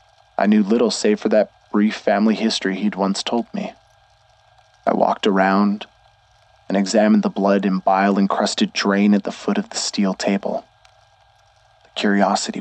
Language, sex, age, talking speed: English, male, 20-39, 150 wpm